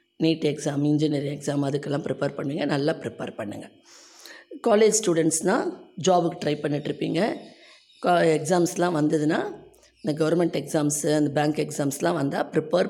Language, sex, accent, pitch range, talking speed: Tamil, female, native, 145-190 Hz, 115 wpm